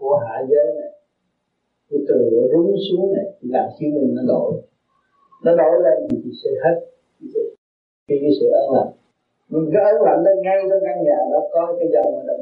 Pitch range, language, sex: 130-195 Hz, Vietnamese, male